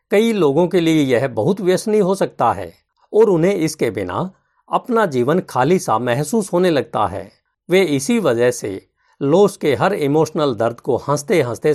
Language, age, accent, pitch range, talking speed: Hindi, 50-69, native, 135-190 Hz, 175 wpm